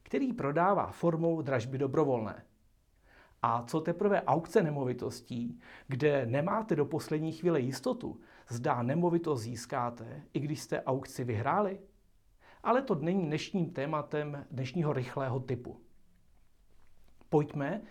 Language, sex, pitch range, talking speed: Czech, male, 125-175 Hz, 110 wpm